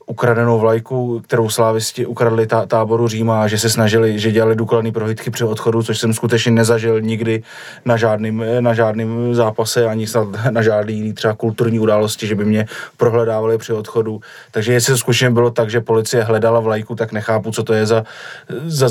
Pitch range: 110-120 Hz